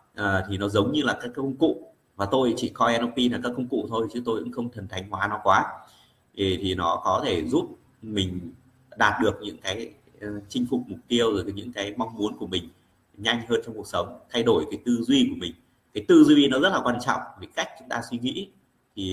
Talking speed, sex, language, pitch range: 250 wpm, male, Vietnamese, 95-120 Hz